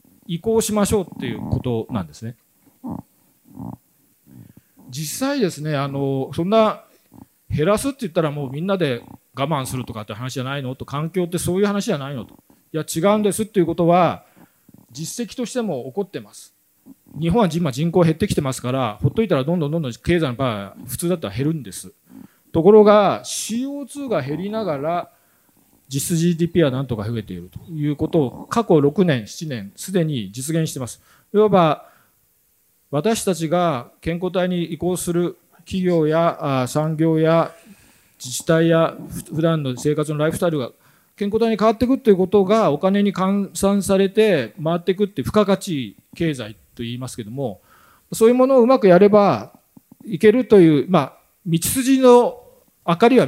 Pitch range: 140-205 Hz